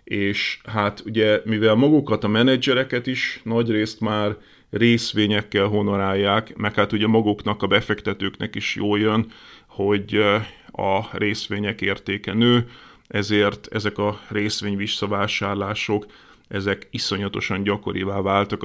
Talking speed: 115 wpm